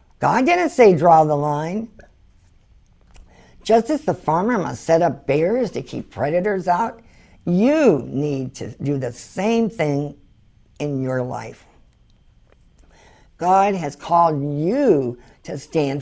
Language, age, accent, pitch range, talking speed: English, 50-69, American, 120-150 Hz, 125 wpm